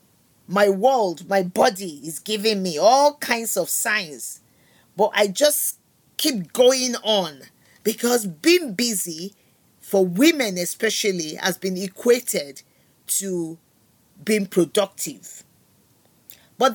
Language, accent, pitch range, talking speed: English, Nigerian, 195-270 Hz, 110 wpm